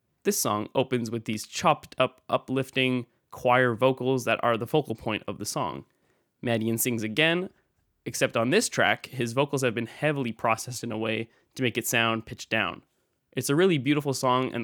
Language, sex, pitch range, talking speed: English, male, 115-140 Hz, 190 wpm